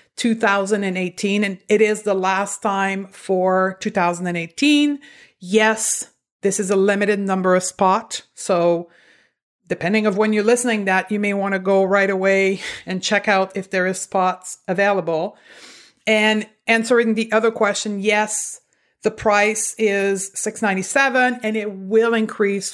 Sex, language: female, English